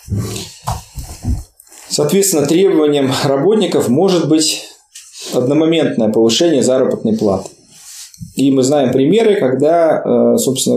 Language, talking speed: Russian, 85 wpm